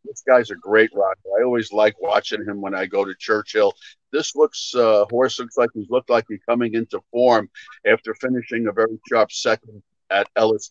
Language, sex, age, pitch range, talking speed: English, male, 50-69, 110-140 Hz, 200 wpm